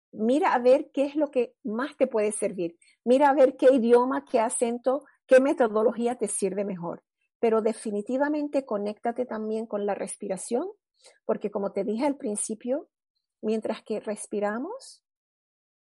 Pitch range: 195-255 Hz